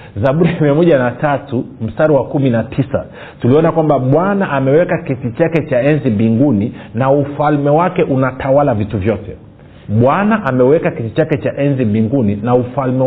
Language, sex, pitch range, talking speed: Swahili, male, 110-155 Hz, 140 wpm